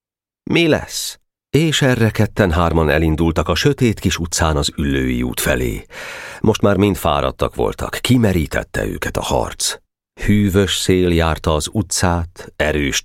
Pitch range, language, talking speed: 75-110 Hz, Hungarian, 135 wpm